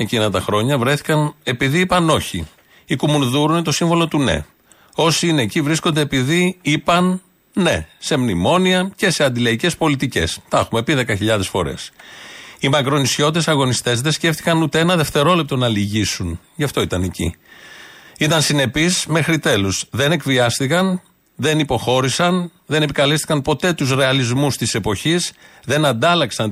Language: Greek